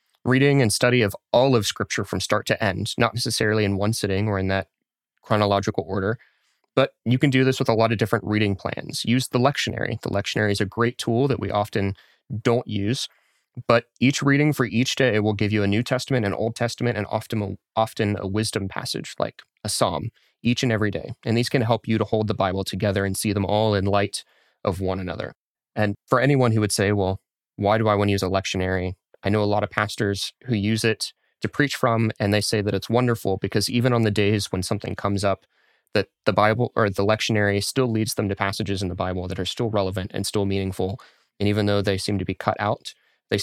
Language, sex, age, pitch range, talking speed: English, male, 20-39, 100-120 Hz, 230 wpm